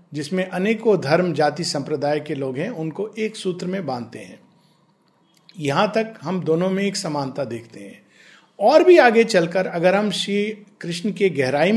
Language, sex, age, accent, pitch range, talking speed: Hindi, male, 50-69, native, 155-200 Hz, 170 wpm